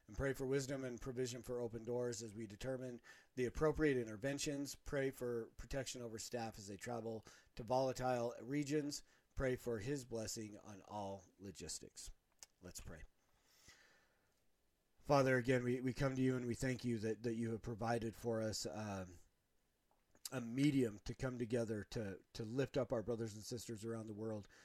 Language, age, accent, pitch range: English, 40-59, American, 110-125 Hz